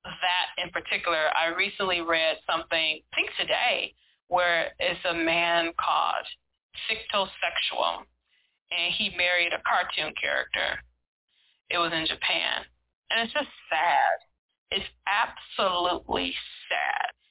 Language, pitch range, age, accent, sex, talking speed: English, 170-215 Hz, 20-39, American, female, 115 wpm